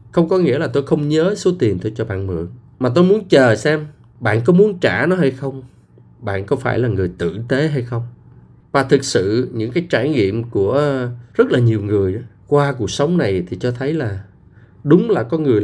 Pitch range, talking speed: 110-165 Hz, 225 wpm